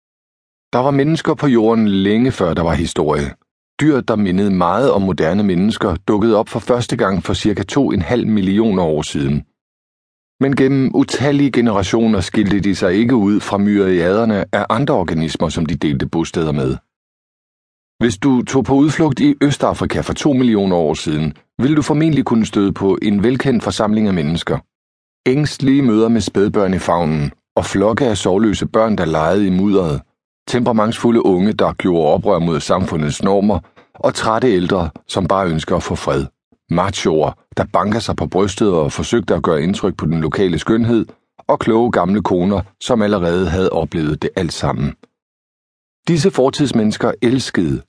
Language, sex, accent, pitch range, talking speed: Danish, male, native, 85-125 Hz, 165 wpm